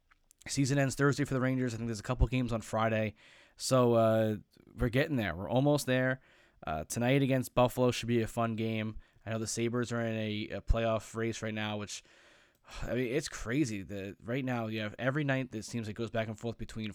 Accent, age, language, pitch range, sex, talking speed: American, 20-39, English, 110-130 Hz, male, 225 wpm